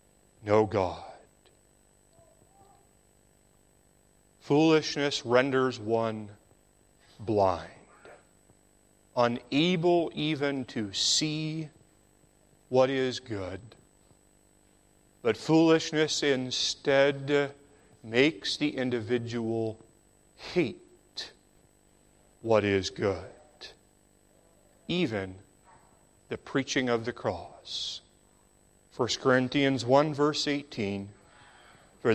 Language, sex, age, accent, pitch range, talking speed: English, male, 40-59, American, 100-145 Hz, 65 wpm